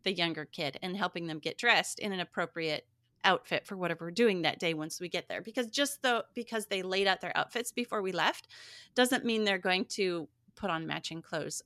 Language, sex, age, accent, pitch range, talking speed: English, female, 30-49, American, 155-210 Hz, 220 wpm